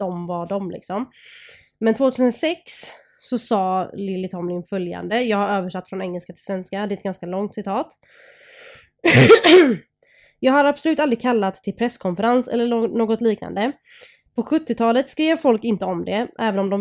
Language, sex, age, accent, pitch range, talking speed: Swedish, female, 20-39, native, 195-250 Hz, 160 wpm